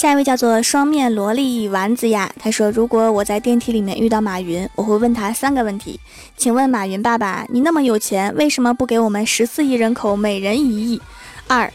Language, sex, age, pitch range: Chinese, female, 20-39, 215-265 Hz